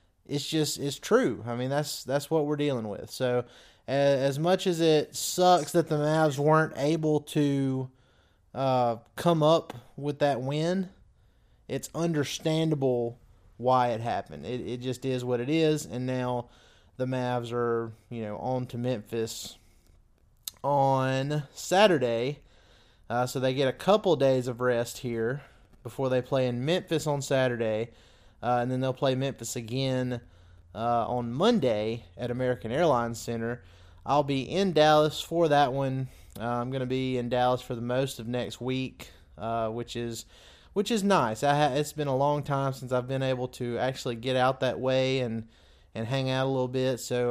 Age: 20-39